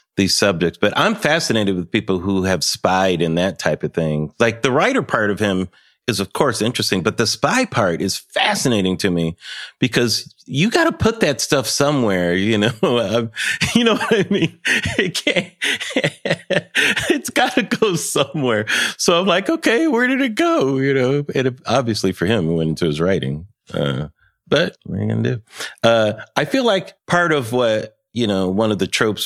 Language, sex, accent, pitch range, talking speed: English, male, American, 90-130 Hz, 195 wpm